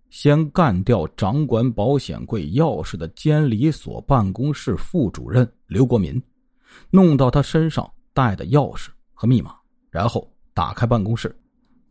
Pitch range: 120-160 Hz